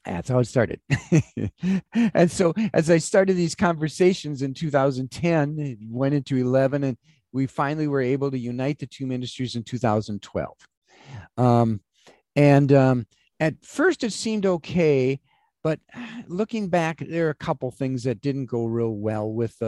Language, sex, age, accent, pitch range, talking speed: English, male, 50-69, American, 125-165 Hz, 155 wpm